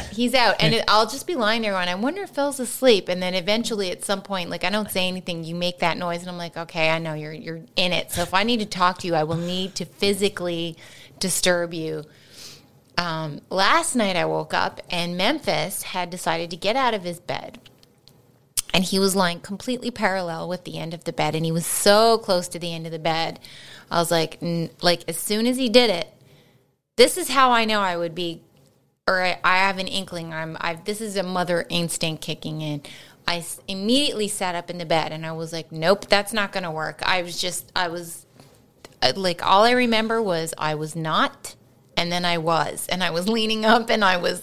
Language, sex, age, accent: English, female, 20-39, American